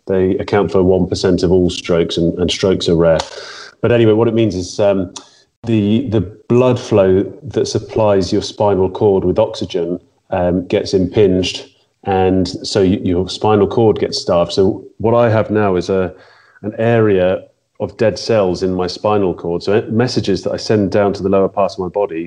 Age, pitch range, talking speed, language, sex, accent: 30-49, 90-105 Hz, 190 wpm, English, male, British